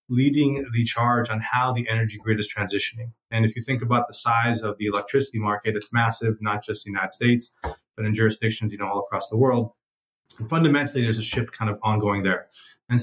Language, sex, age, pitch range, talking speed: English, male, 30-49, 110-125 Hz, 220 wpm